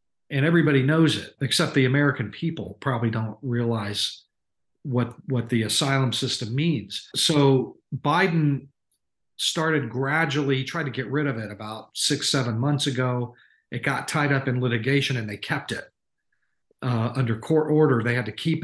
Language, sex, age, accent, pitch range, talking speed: English, male, 40-59, American, 125-155 Hz, 160 wpm